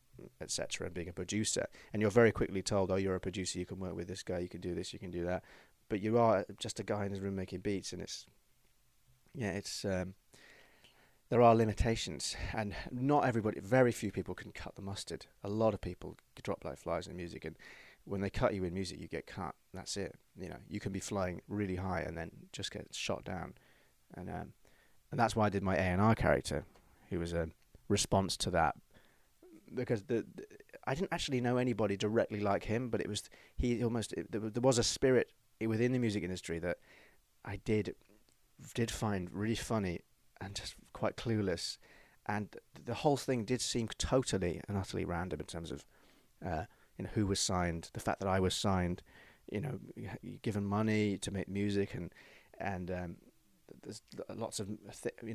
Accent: British